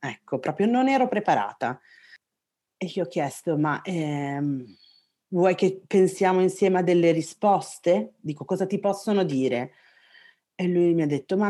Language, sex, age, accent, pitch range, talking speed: Italian, female, 30-49, native, 145-190 Hz, 150 wpm